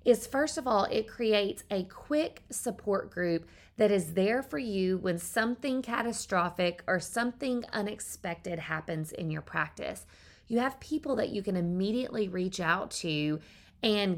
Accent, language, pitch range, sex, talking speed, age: American, English, 180-240 Hz, female, 150 wpm, 20-39